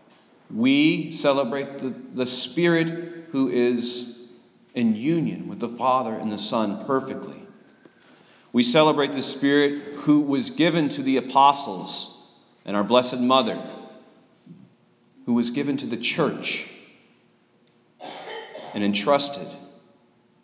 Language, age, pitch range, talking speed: English, 40-59, 120-145 Hz, 110 wpm